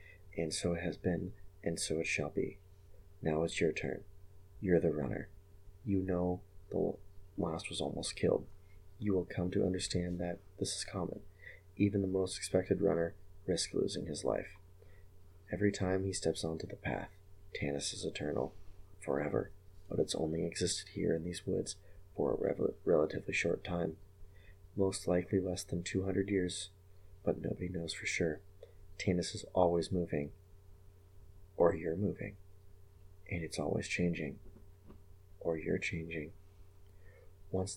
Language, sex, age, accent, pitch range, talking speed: English, male, 30-49, American, 90-95 Hz, 145 wpm